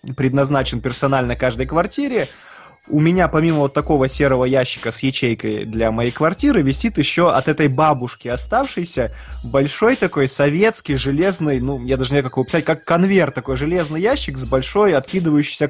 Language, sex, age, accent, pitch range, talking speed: Russian, male, 20-39, native, 120-155 Hz, 155 wpm